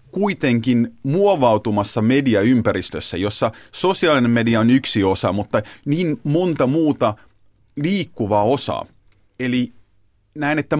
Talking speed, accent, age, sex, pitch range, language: 100 wpm, native, 30-49, male, 105-135 Hz, Finnish